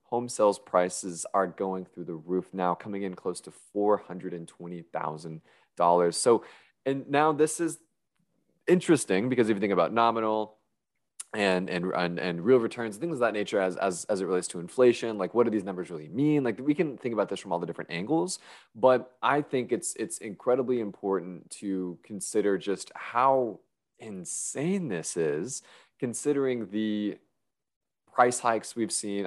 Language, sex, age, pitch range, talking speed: English, male, 20-39, 90-120 Hz, 175 wpm